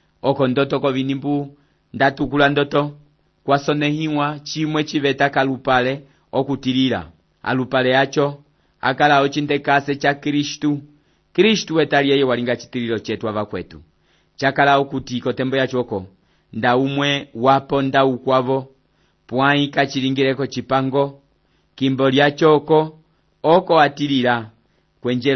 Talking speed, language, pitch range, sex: 100 wpm, English, 125-145 Hz, male